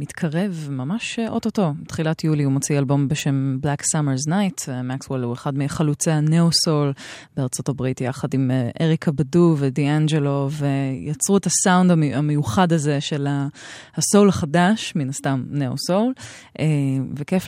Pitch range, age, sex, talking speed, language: 145-180 Hz, 20-39, female, 125 wpm, Hebrew